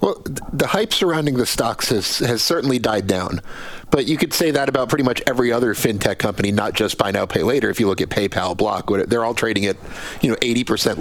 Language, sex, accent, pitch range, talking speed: English, male, American, 100-135 Hz, 235 wpm